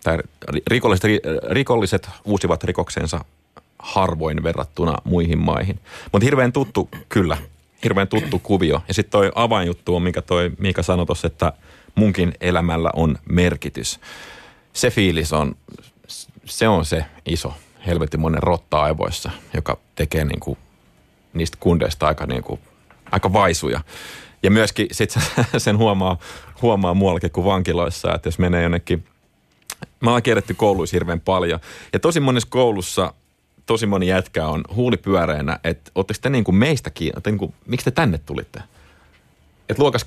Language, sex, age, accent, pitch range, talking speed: Finnish, male, 30-49, native, 80-100 Hz, 135 wpm